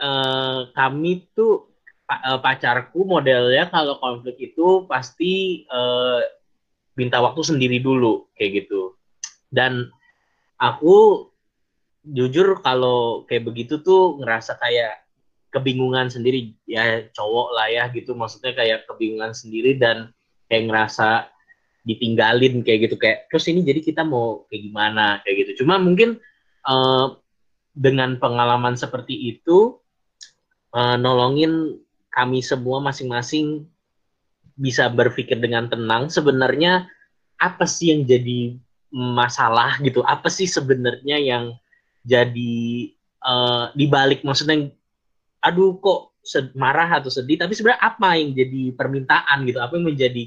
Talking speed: 115 wpm